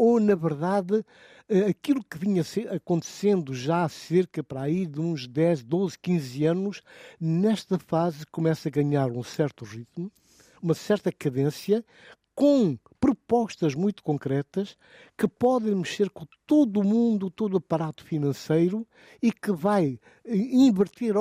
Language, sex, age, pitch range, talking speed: Portuguese, male, 60-79, 155-210 Hz, 135 wpm